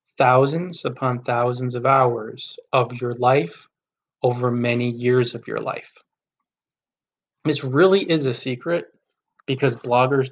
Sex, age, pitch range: male, 20-39, 120-135 Hz